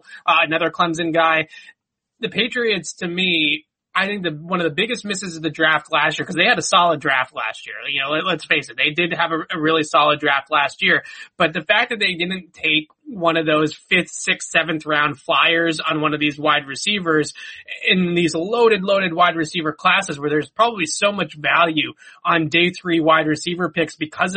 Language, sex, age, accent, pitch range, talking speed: English, male, 20-39, American, 155-185 Hz, 210 wpm